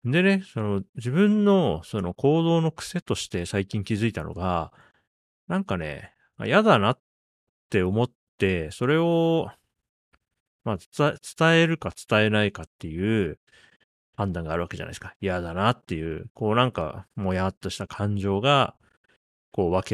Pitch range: 90-125 Hz